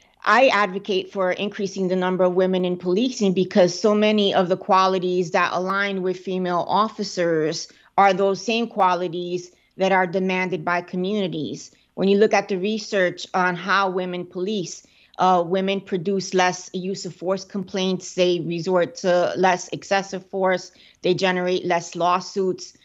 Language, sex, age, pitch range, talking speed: English, female, 30-49, 175-195 Hz, 150 wpm